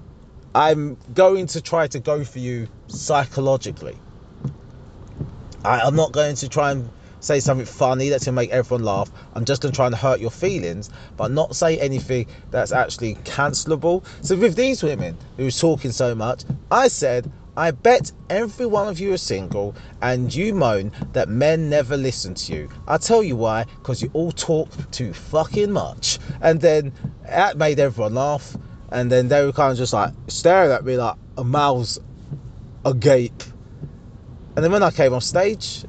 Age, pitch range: 30-49, 120-160 Hz